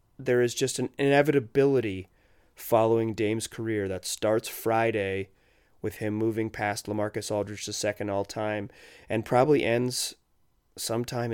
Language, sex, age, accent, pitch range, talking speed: English, male, 30-49, American, 100-120 Hz, 125 wpm